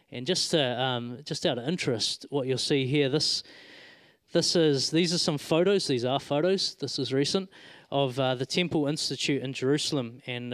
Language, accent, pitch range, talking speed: English, Australian, 125-150 Hz, 190 wpm